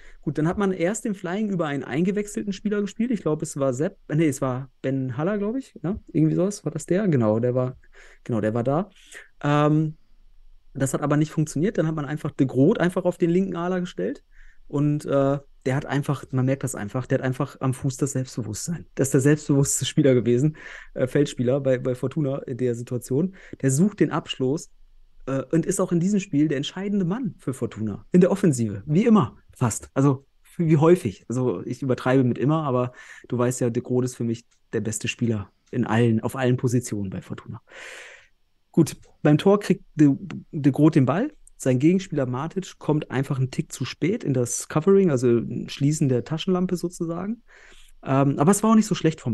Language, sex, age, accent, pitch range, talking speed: German, male, 30-49, German, 130-175 Hz, 200 wpm